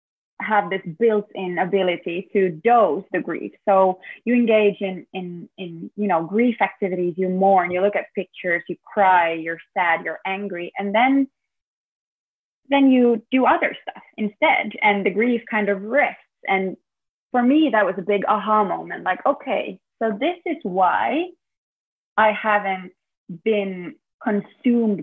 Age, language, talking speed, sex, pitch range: 20-39, English, 150 wpm, female, 185-230 Hz